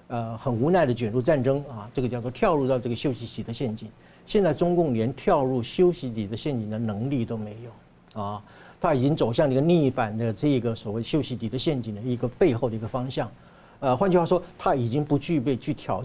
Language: Chinese